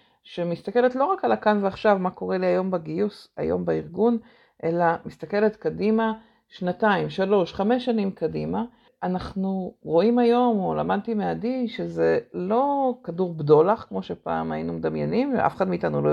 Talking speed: 145 wpm